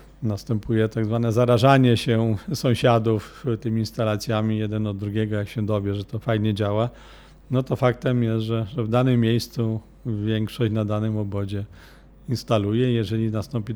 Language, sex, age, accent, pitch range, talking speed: Polish, male, 40-59, native, 105-120 Hz, 145 wpm